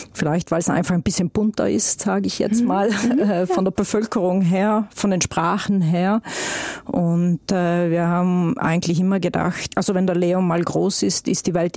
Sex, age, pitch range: female, 40-59, 170-200 Hz